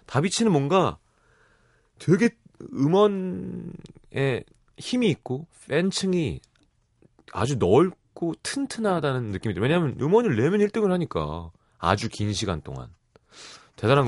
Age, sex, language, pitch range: 30-49, male, Korean, 105-155 Hz